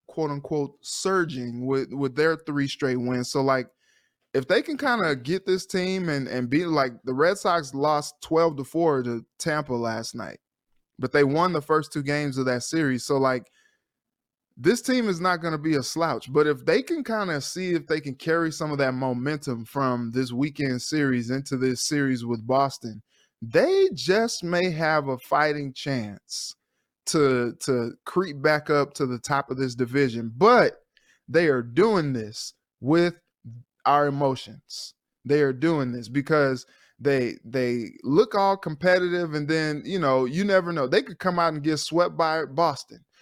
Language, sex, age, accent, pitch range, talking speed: English, male, 20-39, American, 130-165 Hz, 180 wpm